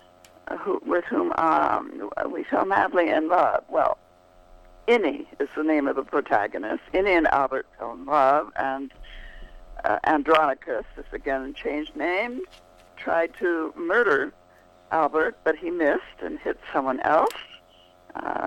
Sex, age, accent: female, 60-79, American